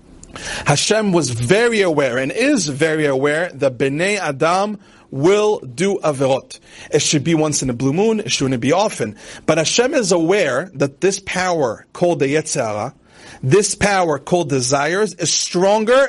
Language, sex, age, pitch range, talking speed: English, male, 40-59, 150-210 Hz, 155 wpm